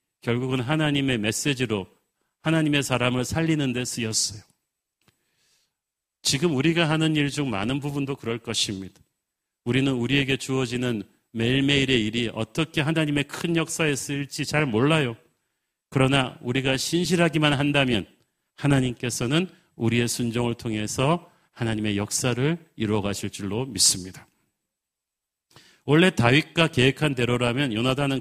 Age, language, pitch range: 40-59, Korean, 115-145 Hz